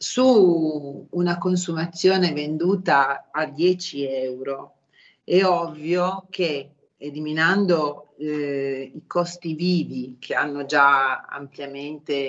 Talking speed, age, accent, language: 95 wpm, 40-59, native, Italian